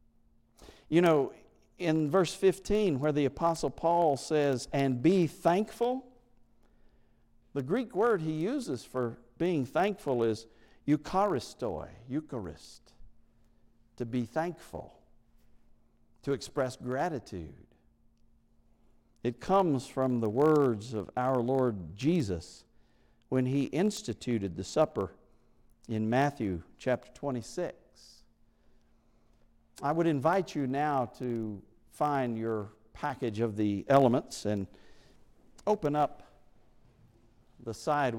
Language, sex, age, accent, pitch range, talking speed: English, male, 50-69, American, 115-145 Hz, 100 wpm